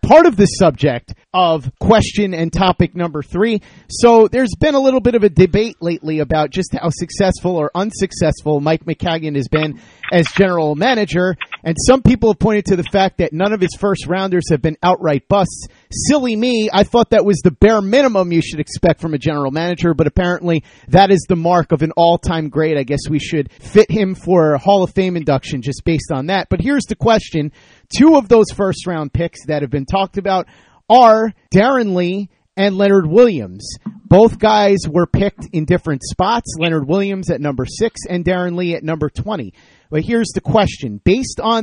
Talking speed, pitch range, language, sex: 200 wpm, 155-200 Hz, English, male